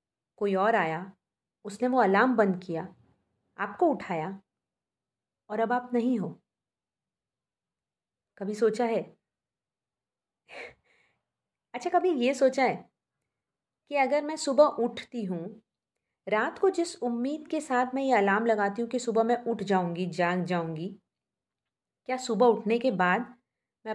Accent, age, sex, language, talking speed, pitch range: native, 30-49, female, Hindi, 135 wpm, 185-250 Hz